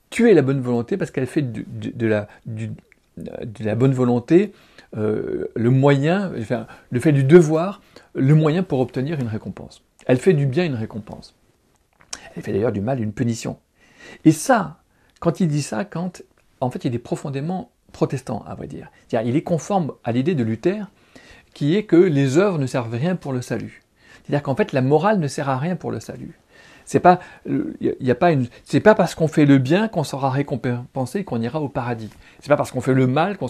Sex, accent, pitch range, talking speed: male, French, 125-175 Hz, 205 wpm